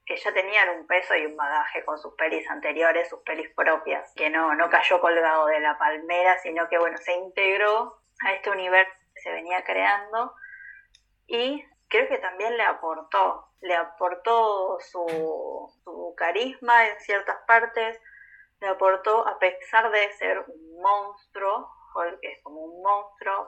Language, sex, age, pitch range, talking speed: Spanish, female, 20-39, 175-220 Hz, 160 wpm